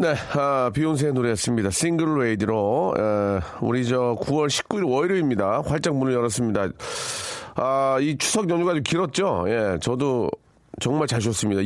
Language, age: Korean, 40-59